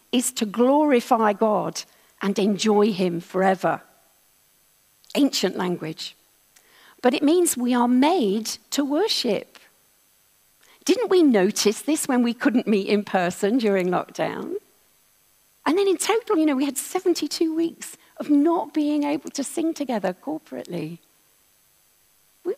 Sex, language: female, English